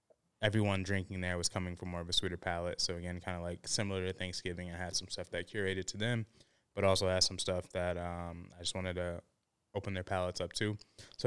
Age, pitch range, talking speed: 20-39, 90-100 Hz, 235 wpm